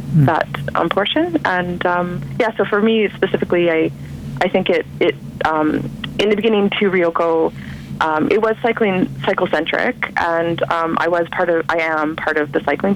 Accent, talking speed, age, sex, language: American, 180 wpm, 30-49, female, English